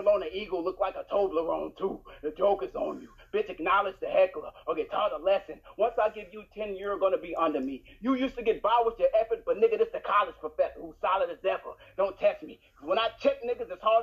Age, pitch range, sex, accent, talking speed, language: 30-49, 180-270 Hz, male, American, 250 wpm, English